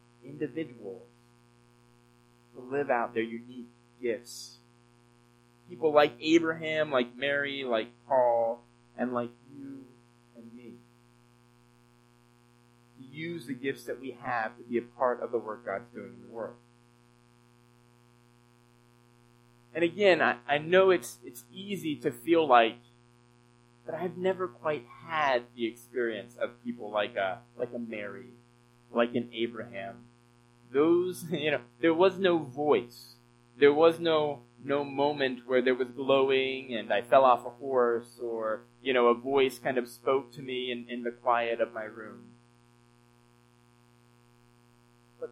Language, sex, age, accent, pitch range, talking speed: English, male, 30-49, American, 120-140 Hz, 140 wpm